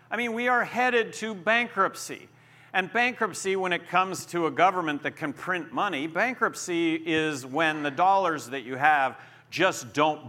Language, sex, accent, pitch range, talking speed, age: English, male, American, 145-210 Hz, 170 wpm, 50-69